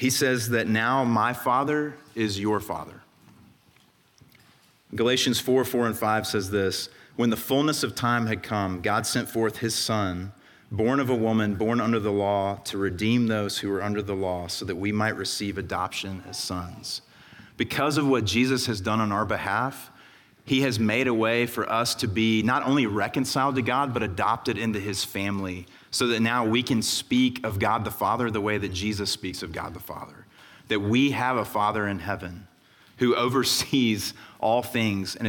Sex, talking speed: male, 190 wpm